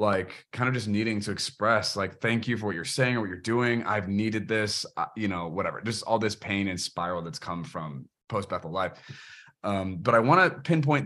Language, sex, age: English, male, 20-39